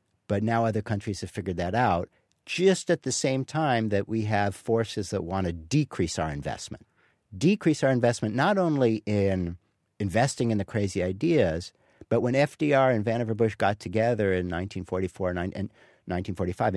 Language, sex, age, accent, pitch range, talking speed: English, male, 50-69, American, 95-120 Hz, 165 wpm